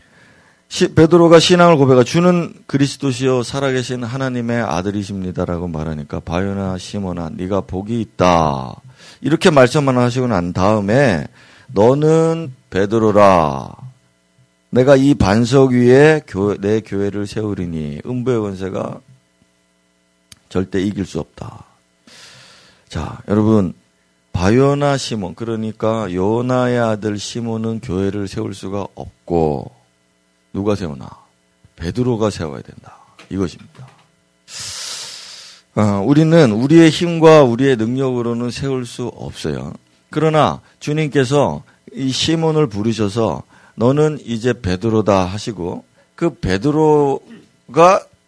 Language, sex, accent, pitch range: Korean, male, native, 90-135 Hz